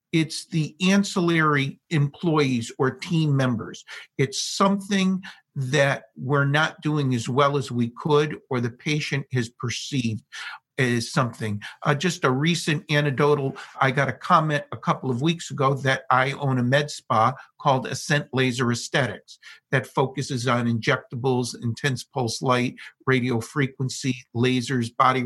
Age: 50-69